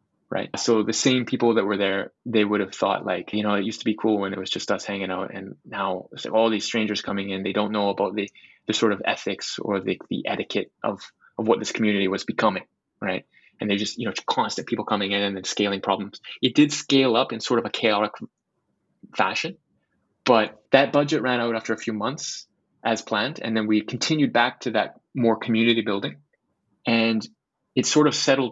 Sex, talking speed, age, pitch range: male, 220 wpm, 20-39, 100-115 Hz